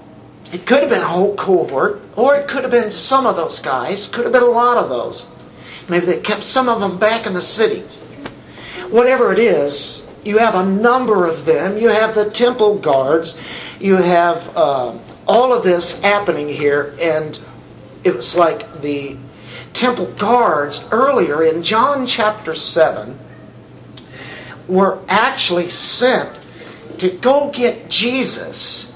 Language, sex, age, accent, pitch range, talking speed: English, male, 50-69, American, 175-245 Hz, 155 wpm